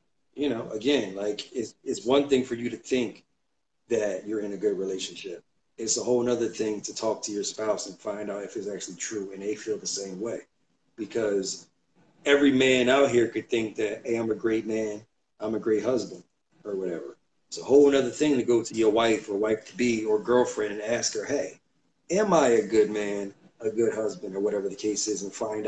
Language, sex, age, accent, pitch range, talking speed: English, male, 40-59, American, 110-140 Hz, 220 wpm